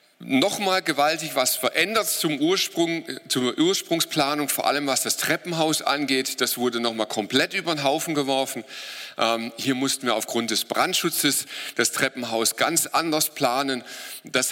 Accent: German